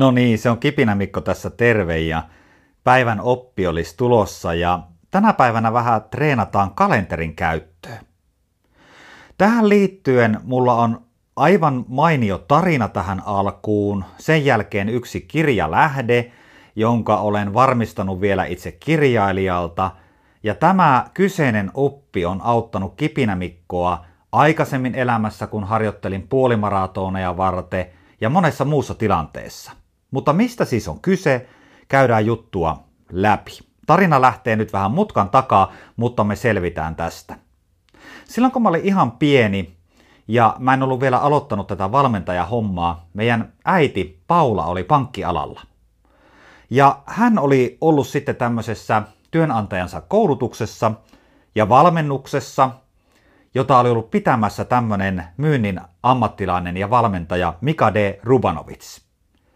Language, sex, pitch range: Finnish, male, 95-135 Hz